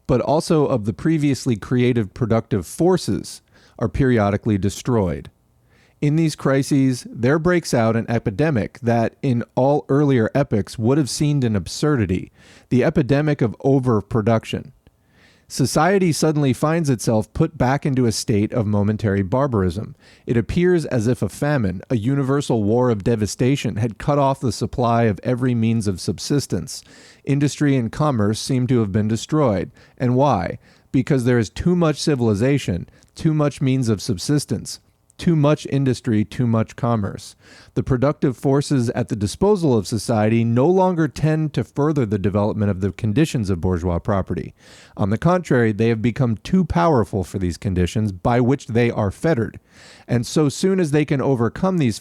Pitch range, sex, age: 110-140 Hz, male, 40-59